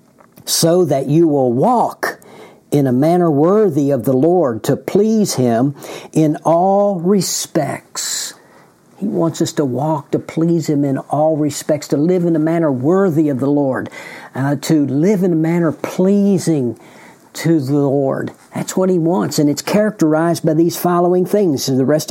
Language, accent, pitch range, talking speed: English, American, 150-175 Hz, 170 wpm